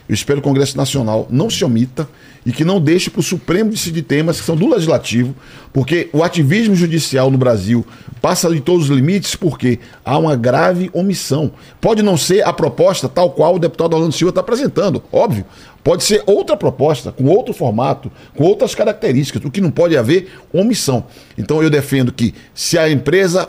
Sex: male